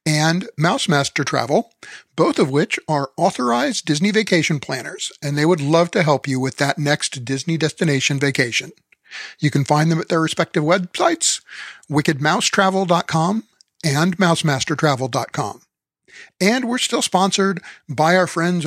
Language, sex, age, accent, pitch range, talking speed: English, male, 50-69, American, 145-175 Hz, 135 wpm